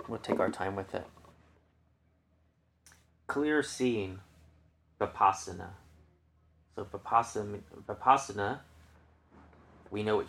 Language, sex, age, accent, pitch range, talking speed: English, male, 30-49, American, 80-110 Hz, 85 wpm